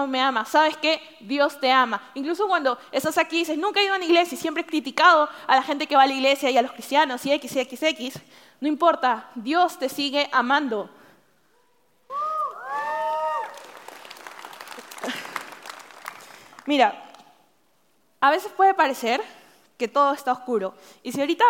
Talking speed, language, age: 165 wpm, English, 20-39